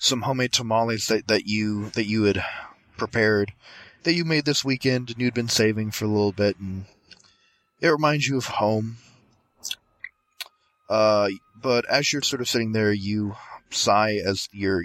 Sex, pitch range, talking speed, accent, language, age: male, 95-115 Hz, 165 wpm, American, English, 30-49